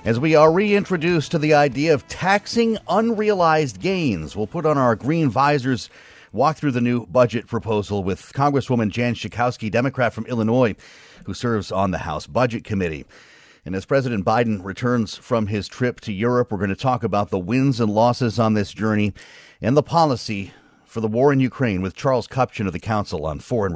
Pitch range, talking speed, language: 100-140 Hz, 190 wpm, English